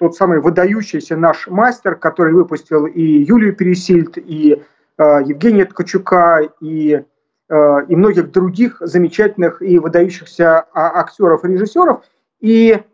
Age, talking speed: 40-59, 125 wpm